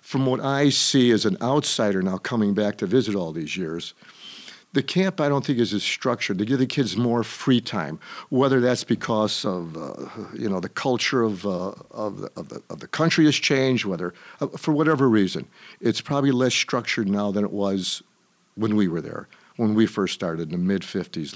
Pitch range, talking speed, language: 105-135 Hz, 210 wpm, English